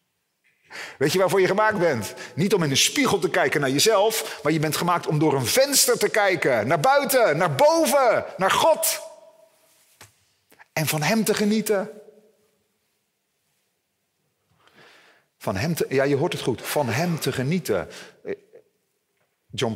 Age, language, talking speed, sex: 40-59, Dutch, 145 wpm, male